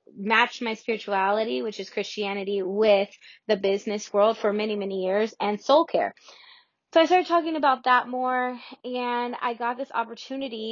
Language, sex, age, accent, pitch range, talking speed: English, female, 20-39, American, 205-245 Hz, 160 wpm